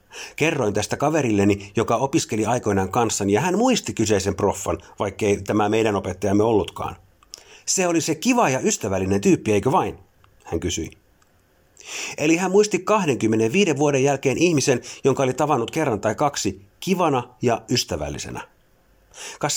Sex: male